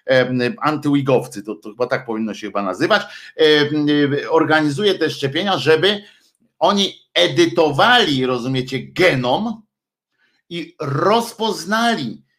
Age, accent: 50-69, native